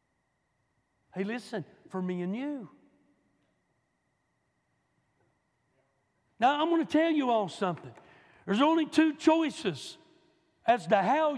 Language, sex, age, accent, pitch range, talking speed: English, male, 60-79, American, 185-285 Hz, 110 wpm